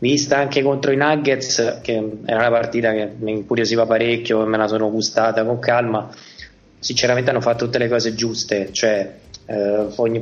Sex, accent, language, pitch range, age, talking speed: male, native, Italian, 110-120 Hz, 20-39, 175 wpm